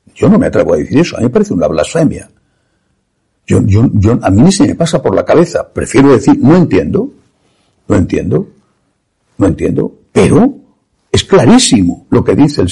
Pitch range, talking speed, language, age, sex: 125-205 Hz, 175 wpm, Spanish, 60-79, male